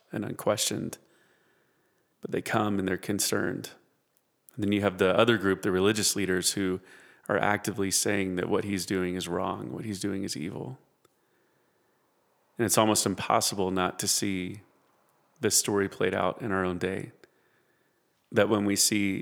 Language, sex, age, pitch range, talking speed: English, male, 30-49, 95-105 Hz, 160 wpm